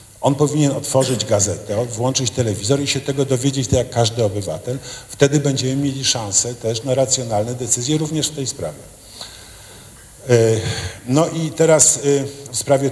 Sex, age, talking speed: male, 50-69, 145 wpm